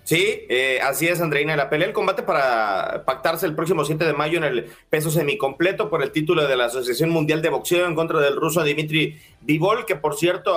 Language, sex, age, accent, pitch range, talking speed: Spanish, male, 30-49, Mexican, 150-185 Hz, 215 wpm